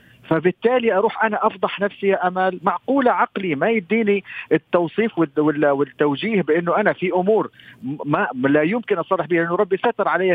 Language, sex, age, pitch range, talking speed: Arabic, male, 50-69, 150-200 Hz, 150 wpm